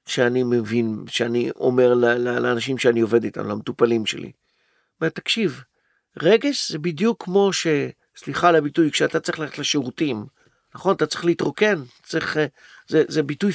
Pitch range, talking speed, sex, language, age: 150-195 Hz, 135 wpm, male, Hebrew, 50-69